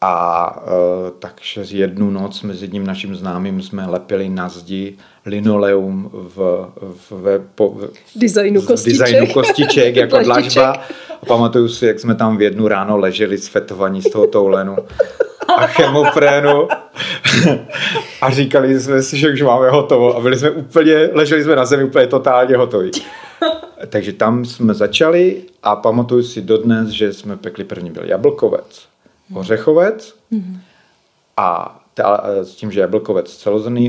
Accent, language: native, Czech